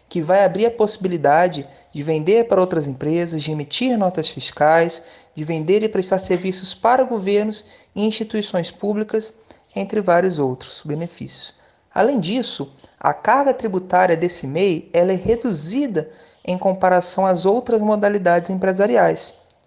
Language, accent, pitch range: Portuguese, Brazilian, 150-215 Hz